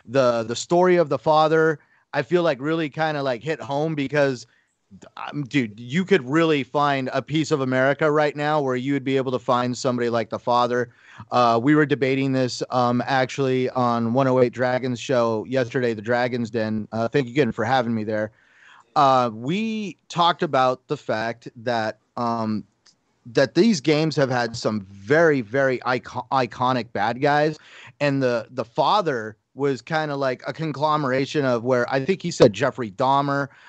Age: 30-49